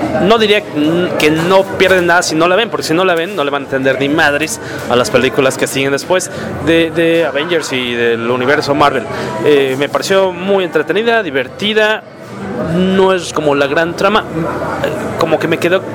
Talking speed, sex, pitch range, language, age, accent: 190 wpm, male, 140-175 Hz, English, 30-49, Mexican